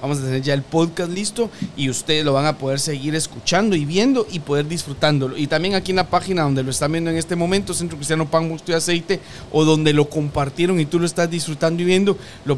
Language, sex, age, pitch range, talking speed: Spanish, male, 40-59, 145-185 Hz, 245 wpm